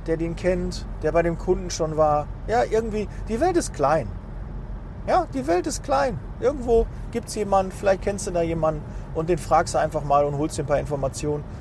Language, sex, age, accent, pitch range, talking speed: German, male, 40-59, German, 155-230 Hz, 210 wpm